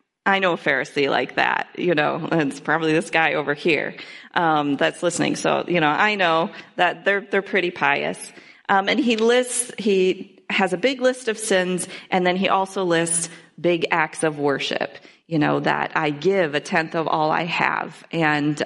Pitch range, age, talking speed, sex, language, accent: 165-210 Hz, 40-59, 195 wpm, female, English, American